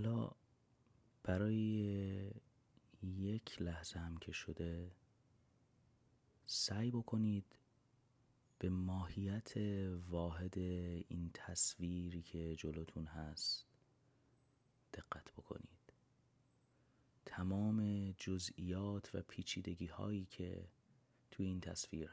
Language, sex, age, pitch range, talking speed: Persian, male, 30-49, 85-120 Hz, 75 wpm